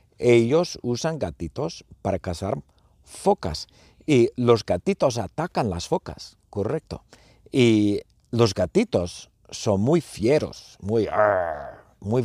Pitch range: 90-125 Hz